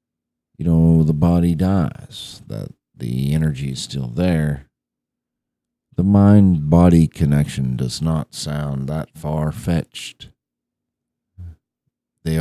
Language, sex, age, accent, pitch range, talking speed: English, male, 50-69, American, 70-80 Hz, 95 wpm